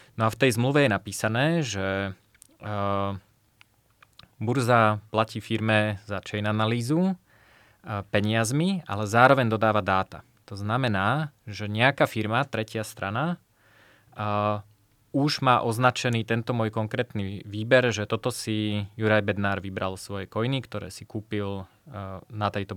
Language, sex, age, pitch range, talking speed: Slovak, male, 20-39, 105-120 Hz, 120 wpm